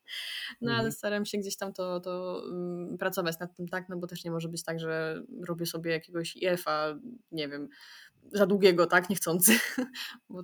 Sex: female